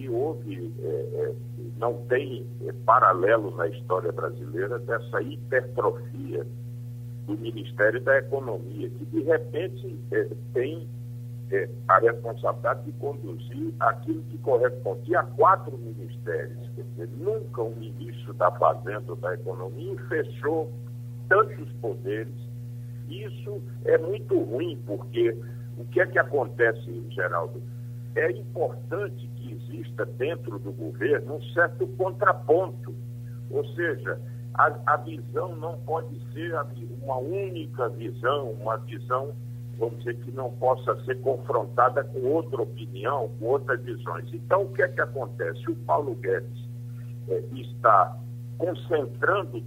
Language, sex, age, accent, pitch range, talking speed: Portuguese, male, 60-79, Brazilian, 115-125 Hz, 120 wpm